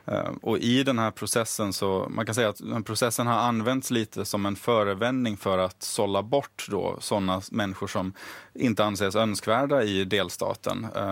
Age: 30-49